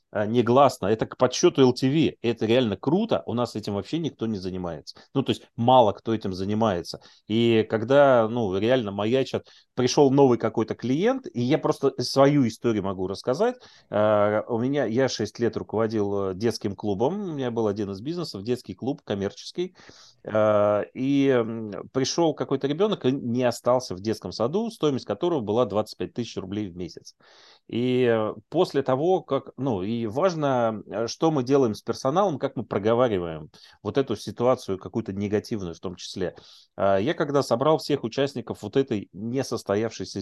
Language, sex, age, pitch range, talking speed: Russian, male, 30-49, 105-135 Hz, 155 wpm